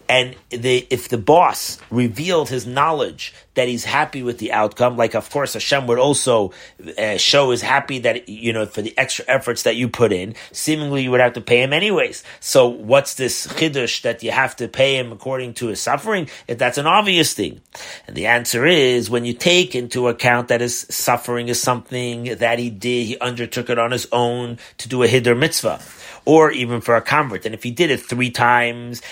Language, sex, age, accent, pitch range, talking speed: English, male, 30-49, American, 120-130 Hz, 210 wpm